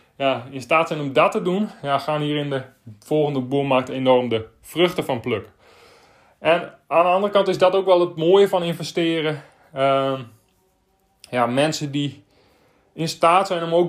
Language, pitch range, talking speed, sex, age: Dutch, 135-165 Hz, 180 wpm, male, 20-39